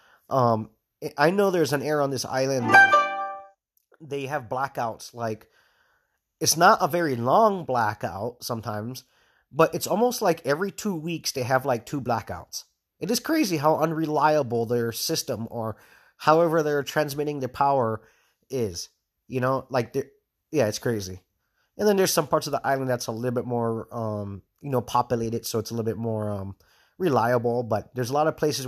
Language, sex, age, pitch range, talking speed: English, male, 30-49, 115-160 Hz, 175 wpm